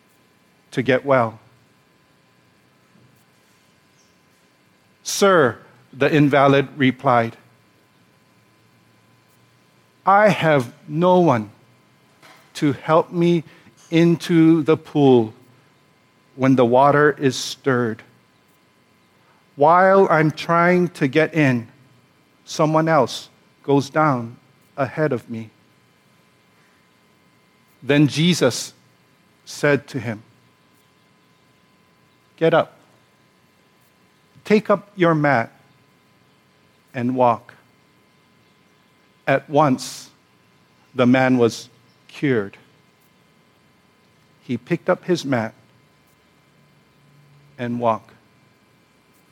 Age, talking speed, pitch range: 50-69, 75 wpm, 105-150 Hz